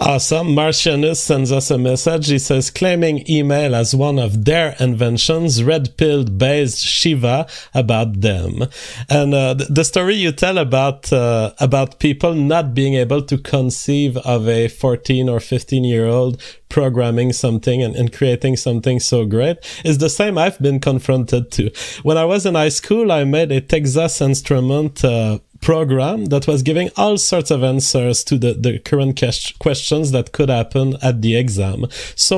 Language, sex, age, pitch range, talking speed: English, male, 30-49, 125-155 Hz, 170 wpm